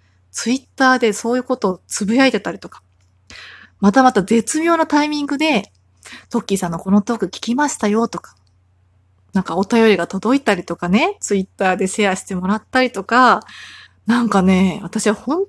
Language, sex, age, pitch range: Japanese, female, 20-39, 180-250 Hz